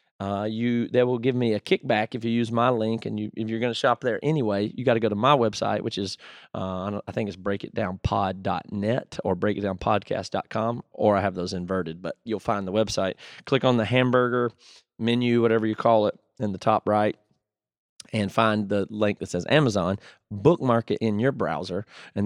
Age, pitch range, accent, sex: 30-49, 100-120 Hz, American, male